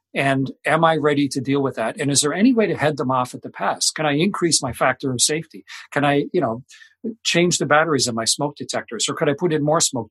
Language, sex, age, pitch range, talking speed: English, male, 50-69, 125-165 Hz, 265 wpm